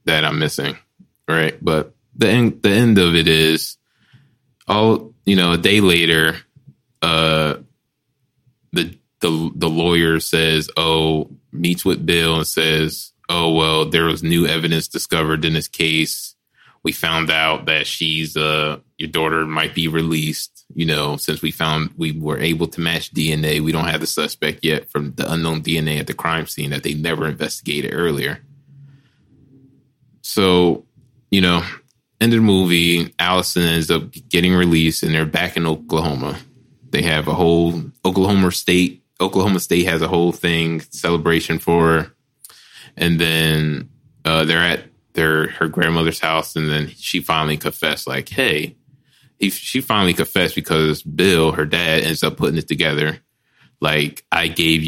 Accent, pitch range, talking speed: American, 80-95 Hz, 155 wpm